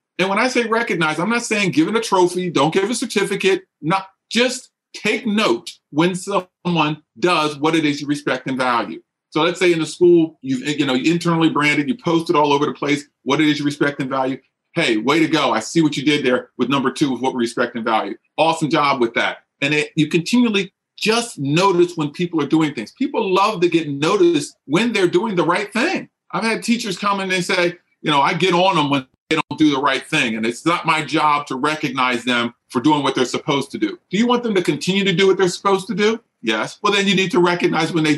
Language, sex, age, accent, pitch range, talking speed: English, male, 40-59, American, 150-220 Hz, 250 wpm